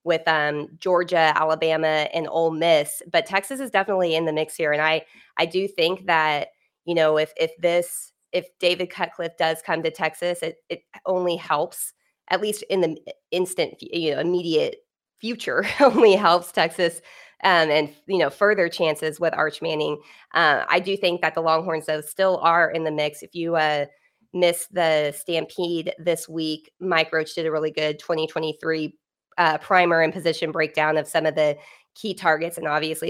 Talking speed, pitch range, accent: 180 wpm, 155-175 Hz, American